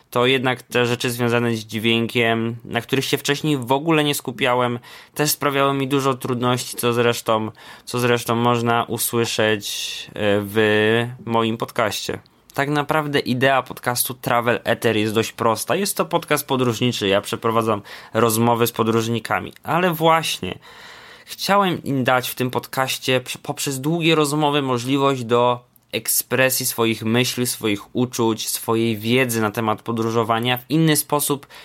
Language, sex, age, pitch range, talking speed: Polish, male, 20-39, 115-140 Hz, 140 wpm